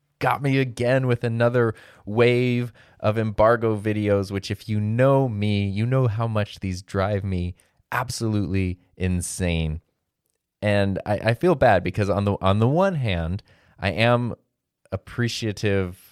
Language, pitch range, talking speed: English, 90-120 Hz, 140 wpm